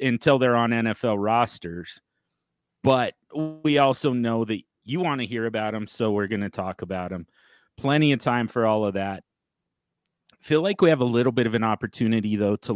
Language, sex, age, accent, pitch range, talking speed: English, male, 30-49, American, 105-135 Hz, 200 wpm